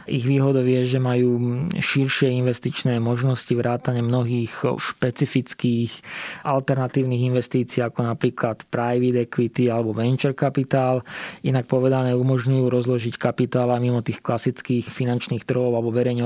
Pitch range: 115-125 Hz